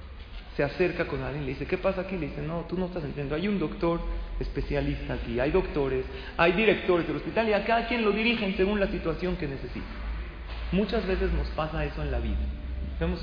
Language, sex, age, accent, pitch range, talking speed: Spanish, male, 40-59, Mexican, 135-205 Hz, 210 wpm